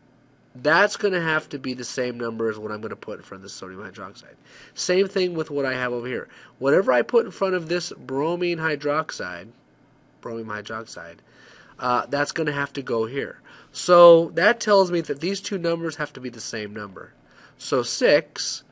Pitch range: 110-155 Hz